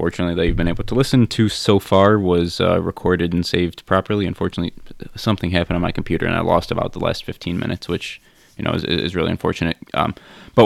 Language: English